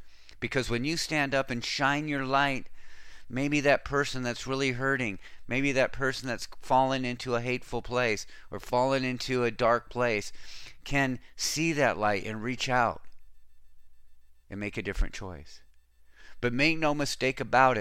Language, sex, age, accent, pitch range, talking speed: English, male, 50-69, American, 80-125 Hz, 160 wpm